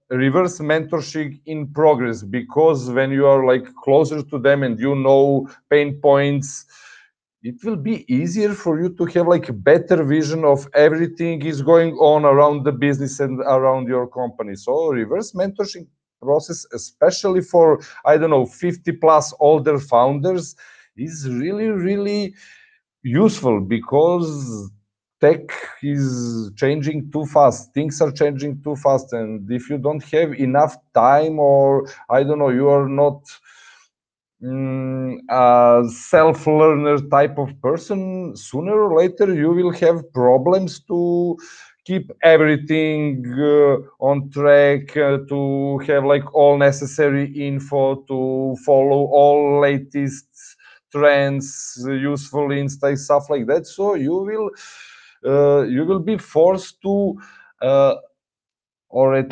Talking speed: 135 wpm